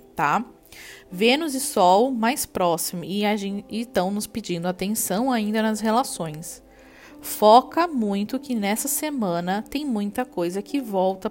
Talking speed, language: 135 wpm, Portuguese